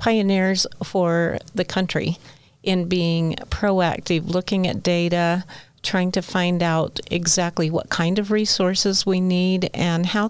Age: 50-69